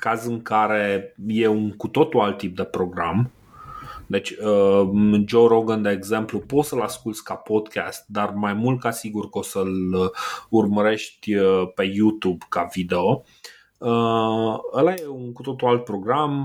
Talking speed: 150 wpm